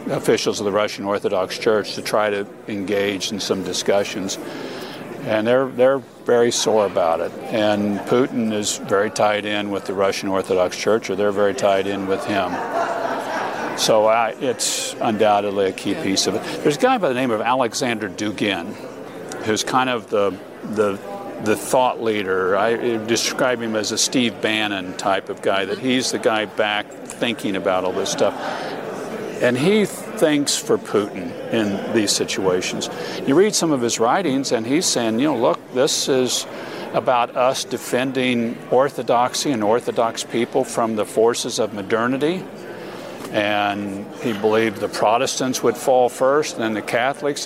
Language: English